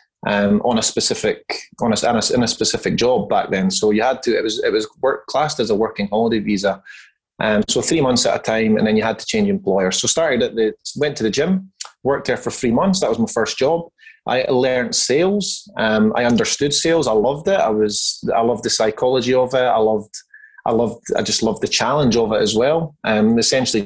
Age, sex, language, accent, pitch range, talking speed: 20-39, male, English, British, 110-165 Hz, 240 wpm